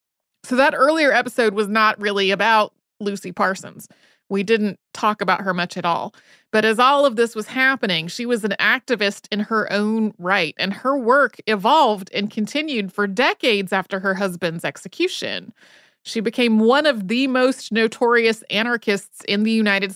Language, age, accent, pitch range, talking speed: English, 30-49, American, 200-240 Hz, 170 wpm